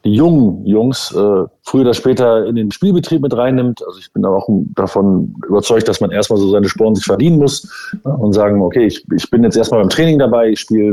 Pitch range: 100-130 Hz